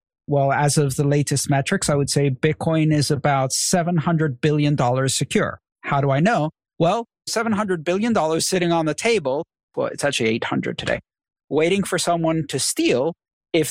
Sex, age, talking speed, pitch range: male, 50-69, 160 wpm, 145-180 Hz